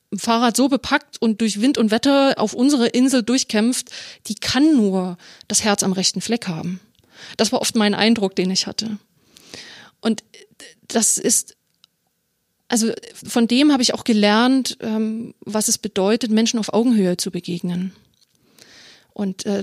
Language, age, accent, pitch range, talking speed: German, 30-49, German, 210-245 Hz, 150 wpm